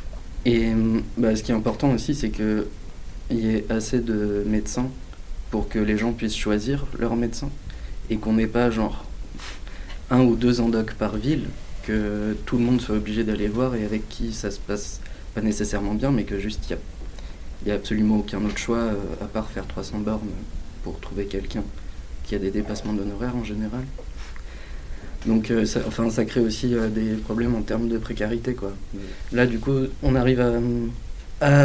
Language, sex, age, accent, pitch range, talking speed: French, male, 20-39, French, 100-115 Hz, 185 wpm